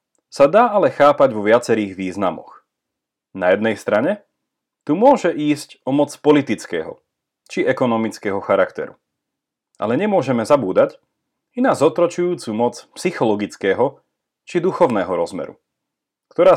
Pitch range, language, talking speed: 105-175 Hz, Slovak, 110 wpm